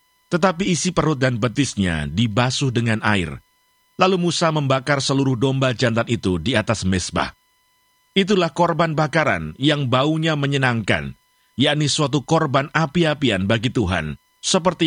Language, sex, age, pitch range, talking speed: Indonesian, male, 50-69, 115-160 Hz, 125 wpm